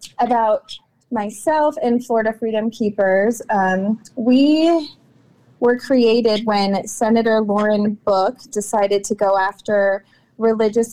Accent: American